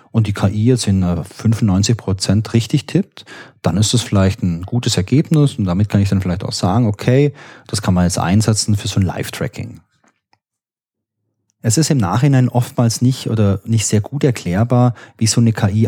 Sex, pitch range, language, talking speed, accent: male, 100-125 Hz, German, 180 wpm, German